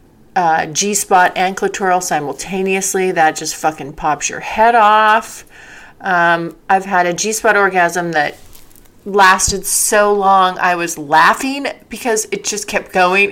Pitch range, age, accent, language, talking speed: 170-230 Hz, 30-49, American, English, 135 wpm